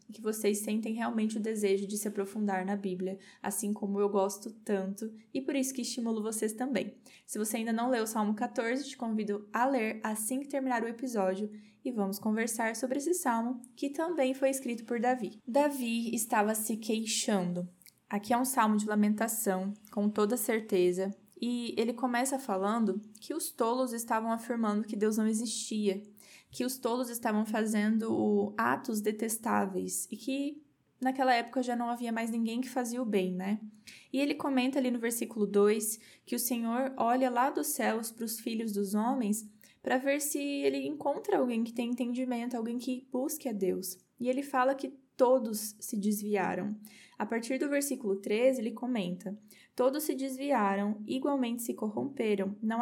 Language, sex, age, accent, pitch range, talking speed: Portuguese, female, 10-29, Brazilian, 210-260 Hz, 175 wpm